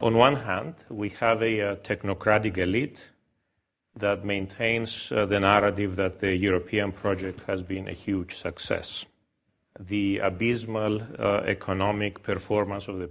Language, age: English, 40-59